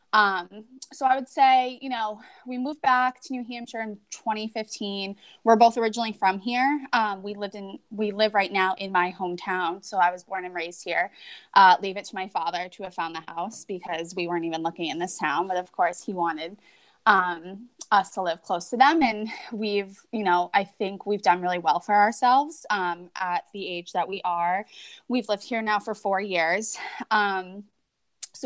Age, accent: 20-39, American